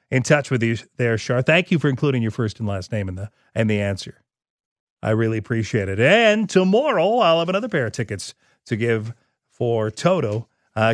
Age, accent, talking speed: 40-59, American, 205 wpm